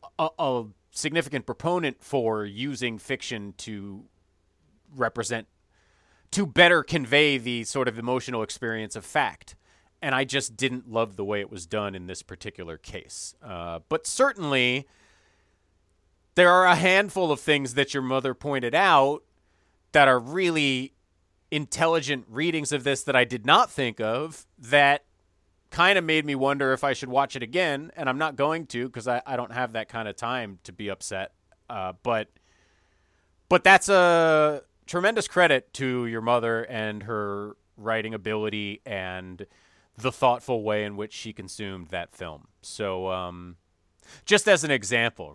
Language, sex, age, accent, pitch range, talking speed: English, male, 30-49, American, 100-140 Hz, 155 wpm